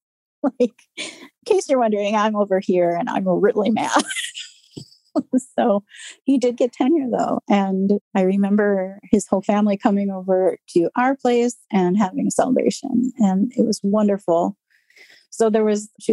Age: 30-49